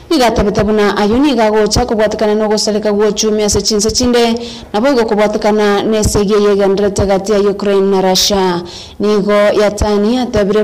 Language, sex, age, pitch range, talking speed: English, female, 20-39, 205-220 Hz, 130 wpm